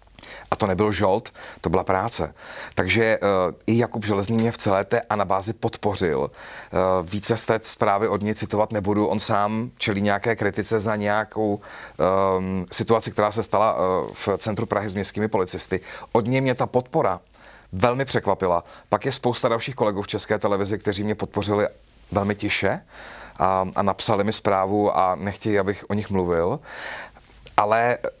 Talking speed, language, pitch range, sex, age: 170 wpm, Czech, 100-125 Hz, male, 40-59